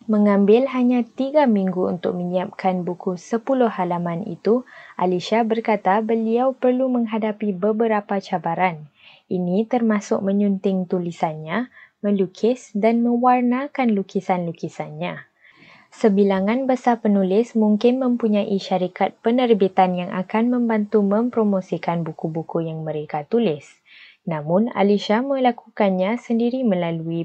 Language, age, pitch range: Malay, 20-39, 185-230 Hz